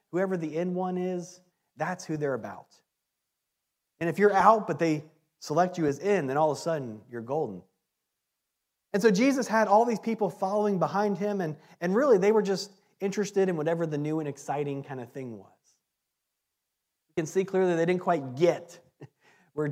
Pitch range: 145-200 Hz